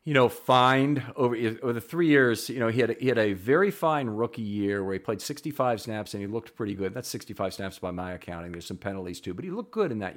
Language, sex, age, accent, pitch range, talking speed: English, male, 40-59, American, 105-135 Hz, 270 wpm